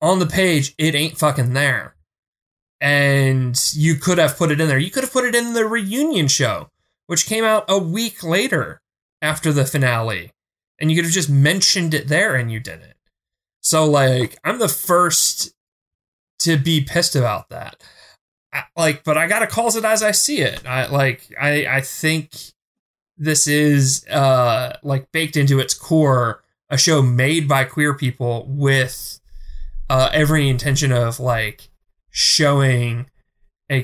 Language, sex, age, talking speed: English, male, 30-49, 165 wpm